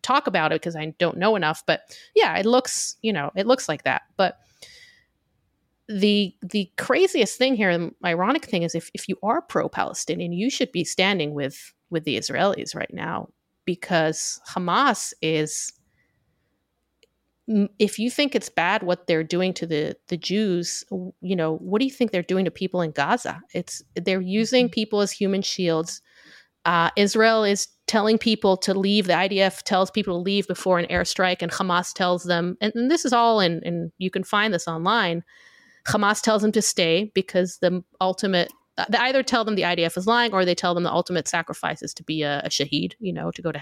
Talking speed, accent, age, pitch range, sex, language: 195 wpm, American, 30-49, 170-210 Hz, female, English